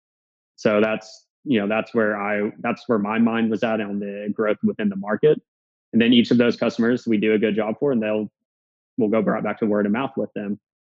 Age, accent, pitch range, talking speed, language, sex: 20-39, American, 100-110 Hz, 235 wpm, English, male